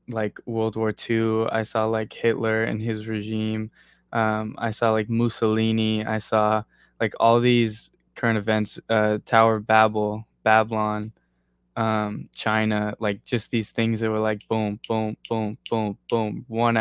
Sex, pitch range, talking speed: male, 105-115 Hz, 155 wpm